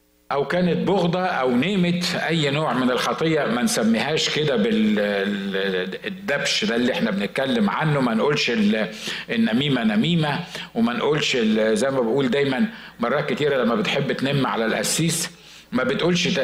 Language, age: Arabic, 50-69